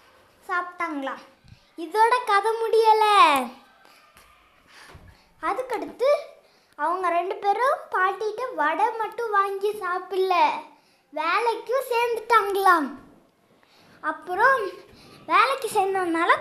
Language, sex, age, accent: Tamil, female, 20-39, native